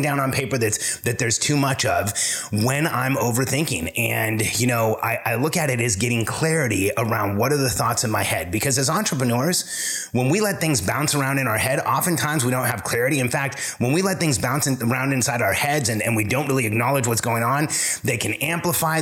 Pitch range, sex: 115-150 Hz, male